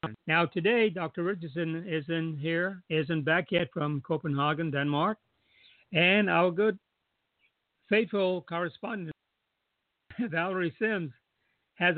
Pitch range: 135-175 Hz